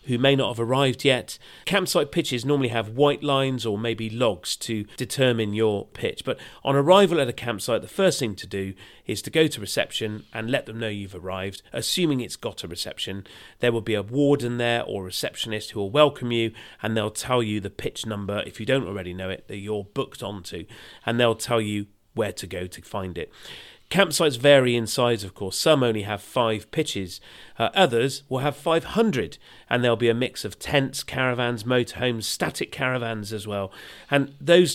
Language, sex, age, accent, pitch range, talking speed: English, male, 30-49, British, 105-135 Hz, 200 wpm